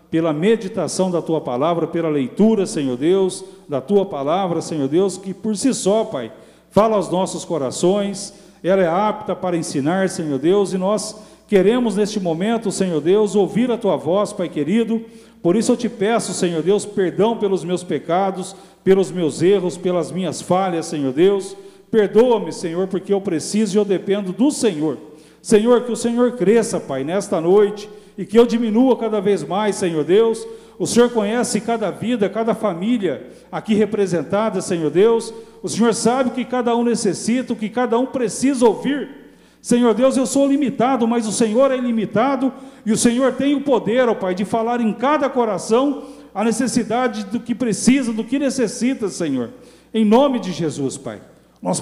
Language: Portuguese